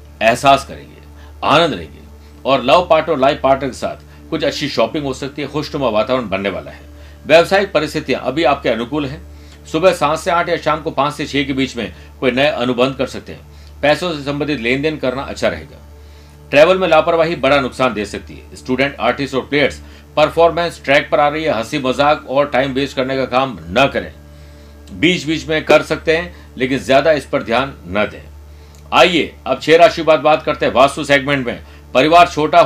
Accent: native